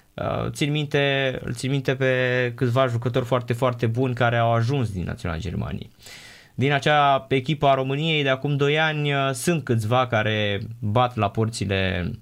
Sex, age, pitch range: male, 20-39, 105-130 Hz